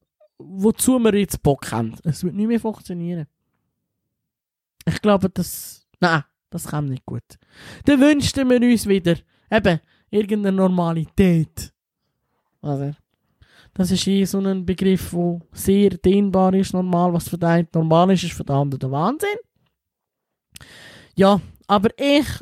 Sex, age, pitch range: male, 20-39, 175-220 Hz